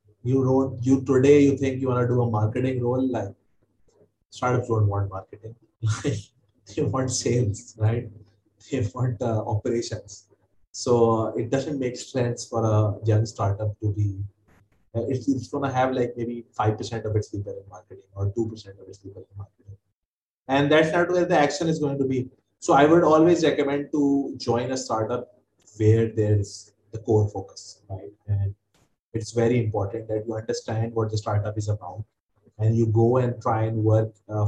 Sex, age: male, 20-39